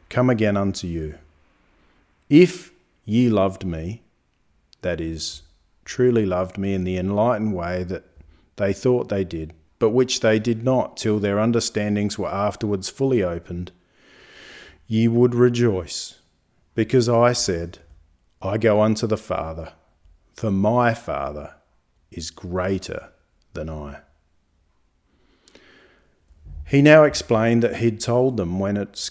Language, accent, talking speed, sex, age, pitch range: English, Australian, 125 wpm, male, 40-59, 85-120 Hz